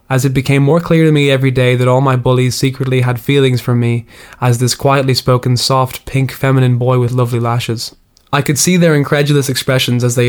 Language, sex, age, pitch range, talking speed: English, male, 20-39, 120-135 Hz, 215 wpm